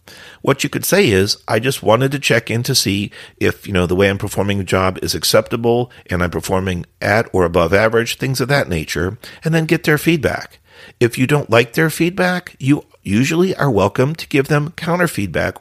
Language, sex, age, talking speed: English, male, 50-69, 210 wpm